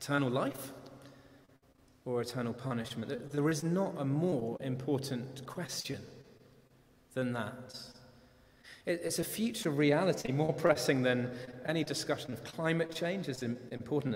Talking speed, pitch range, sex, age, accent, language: 120 wpm, 125-165 Hz, male, 30-49, British, English